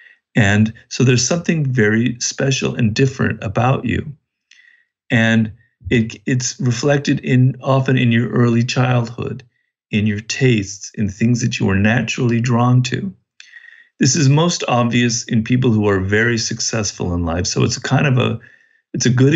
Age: 50-69